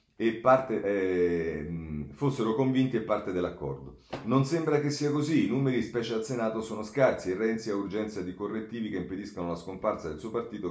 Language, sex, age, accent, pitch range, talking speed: Italian, male, 40-59, native, 90-120 Hz, 170 wpm